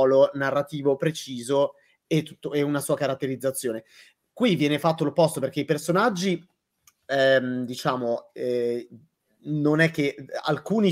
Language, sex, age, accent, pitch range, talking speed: Italian, male, 30-49, native, 135-170 Hz, 120 wpm